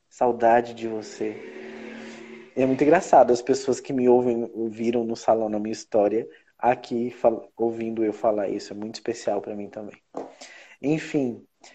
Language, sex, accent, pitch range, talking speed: Portuguese, male, Brazilian, 120-140 Hz, 155 wpm